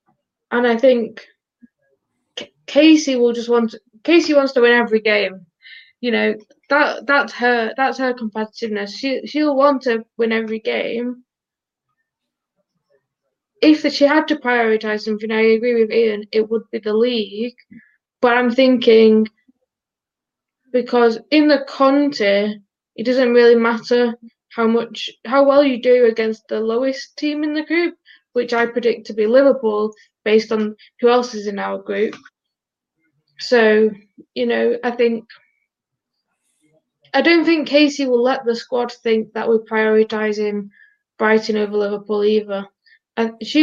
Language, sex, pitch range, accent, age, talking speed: English, female, 215-260 Hz, British, 10-29, 145 wpm